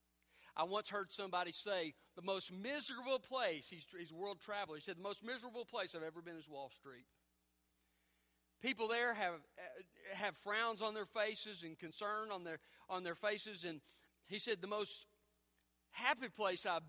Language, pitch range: English, 150-220 Hz